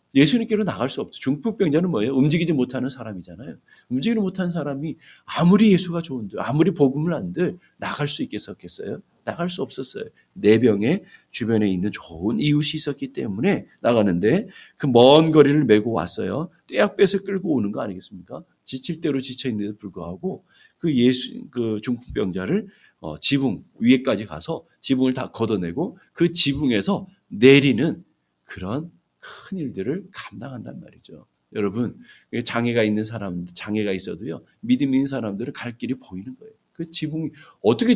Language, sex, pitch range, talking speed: English, male, 110-165 Hz, 130 wpm